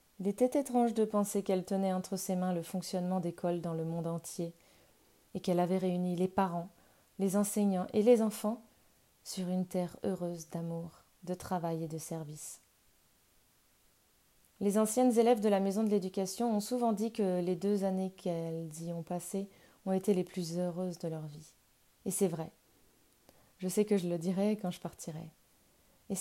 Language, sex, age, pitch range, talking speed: French, female, 20-39, 175-210 Hz, 180 wpm